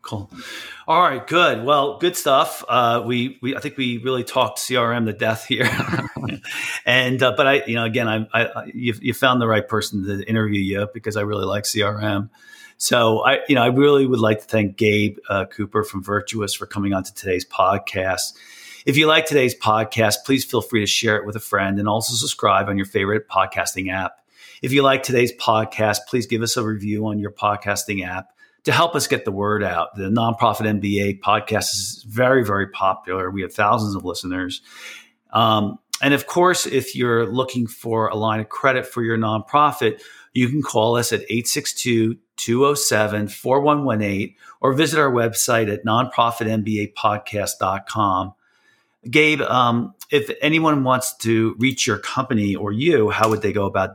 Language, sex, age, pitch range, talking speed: English, male, 40-59, 105-130 Hz, 180 wpm